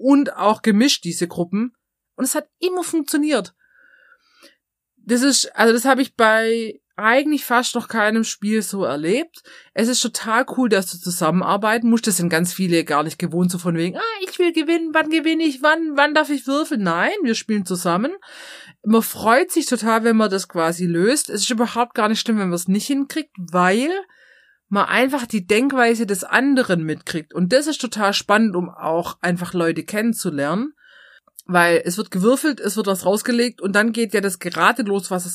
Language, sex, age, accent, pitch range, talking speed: German, female, 30-49, German, 180-255 Hz, 190 wpm